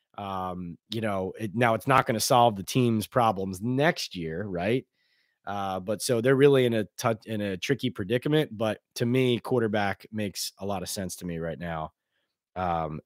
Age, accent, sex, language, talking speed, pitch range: 30-49, American, male, English, 190 wpm, 110-130 Hz